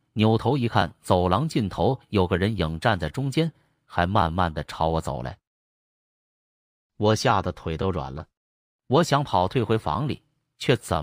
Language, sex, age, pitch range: Chinese, male, 30-49, 85-120 Hz